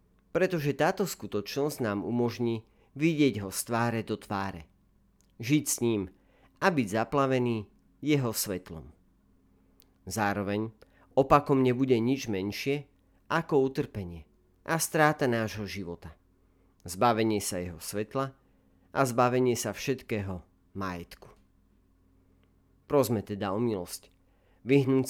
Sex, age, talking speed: male, 40-59, 105 wpm